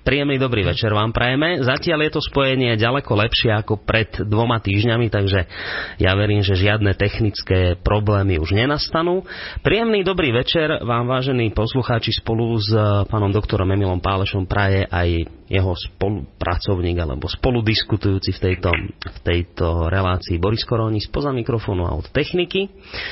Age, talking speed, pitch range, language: 30-49, 140 wpm, 95-120 Hz, Slovak